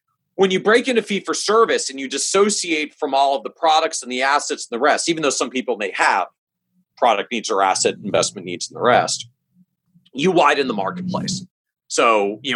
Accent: American